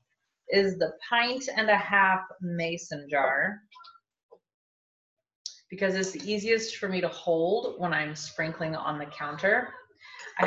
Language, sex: English, female